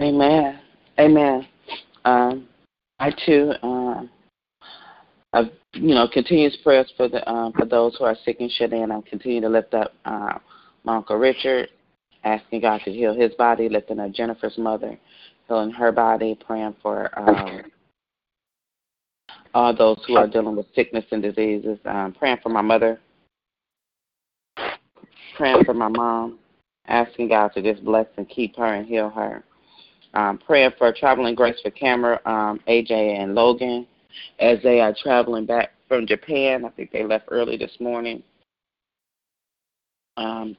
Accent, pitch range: American, 105-120 Hz